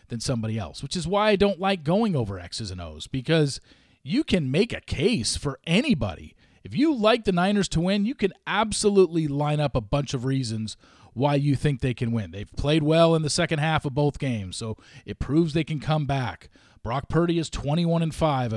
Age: 40-59